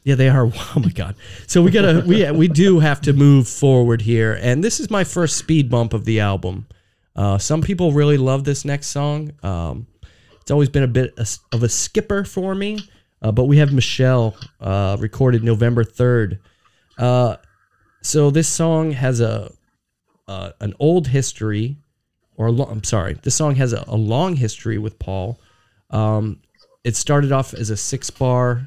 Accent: American